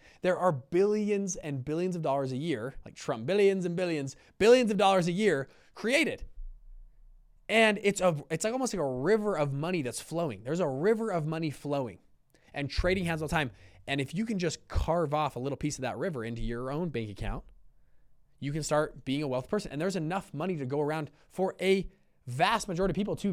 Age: 20-39